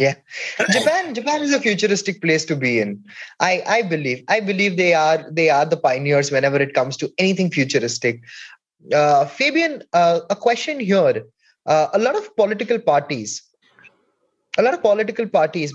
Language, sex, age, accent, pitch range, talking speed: English, male, 20-39, Indian, 160-225 Hz, 170 wpm